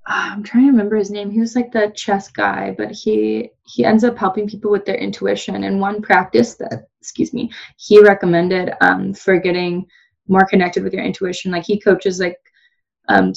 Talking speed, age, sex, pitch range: 195 wpm, 20-39, female, 170-205 Hz